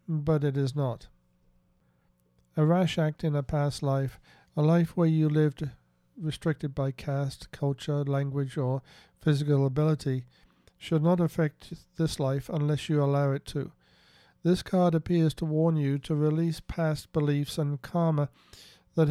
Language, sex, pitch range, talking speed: English, male, 135-160 Hz, 150 wpm